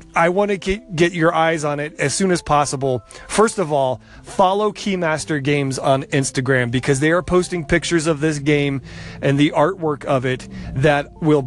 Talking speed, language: 185 wpm, English